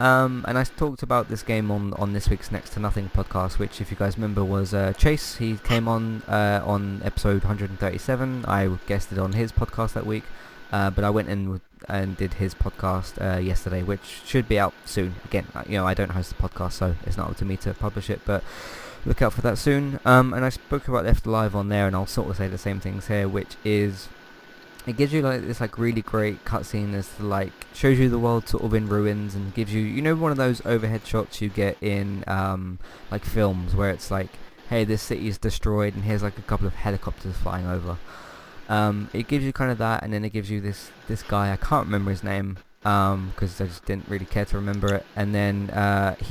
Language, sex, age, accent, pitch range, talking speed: English, male, 20-39, British, 95-110 Hz, 235 wpm